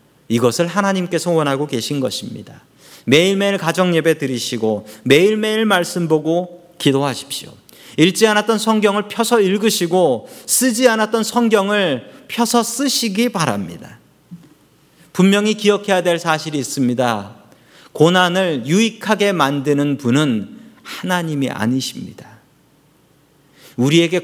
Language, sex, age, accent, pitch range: Korean, male, 40-59, native, 145-215 Hz